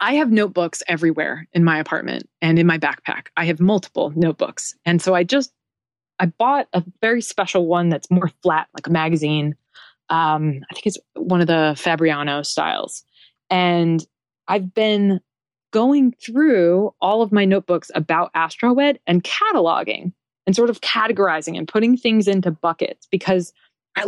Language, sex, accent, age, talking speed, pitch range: English, female, American, 20-39, 160 wpm, 165-225 Hz